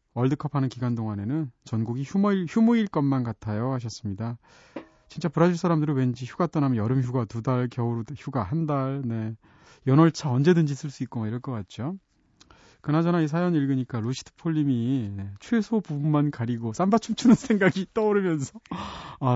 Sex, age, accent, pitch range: male, 30-49, native, 120-175 Hz